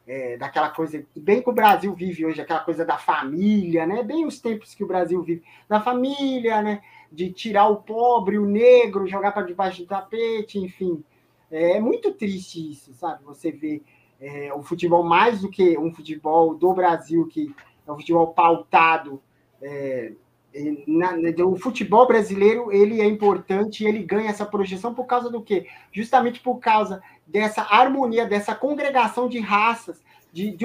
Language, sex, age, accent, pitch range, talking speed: Portuguese, male, 20-39, Brazilian, 175-245 Hz, 160 wpm